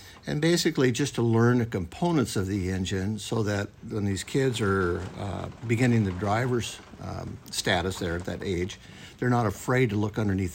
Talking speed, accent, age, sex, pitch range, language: 180 wpm, American, 60-79, male, 95-115 Hz, English